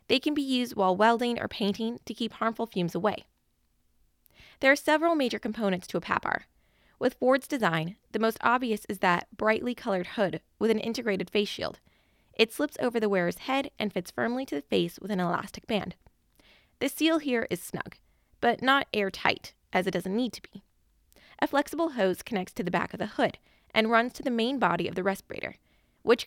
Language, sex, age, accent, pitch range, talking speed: English, female, 20-39, American, 200-265 Hz, 200 wpm